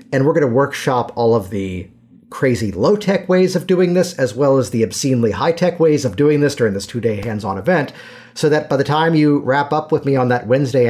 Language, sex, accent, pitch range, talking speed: English, male, American, 115-150 Hz, 230 wpm